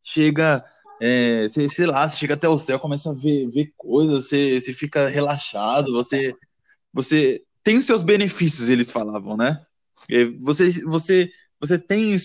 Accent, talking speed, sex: Brazilian, 160 wpm, male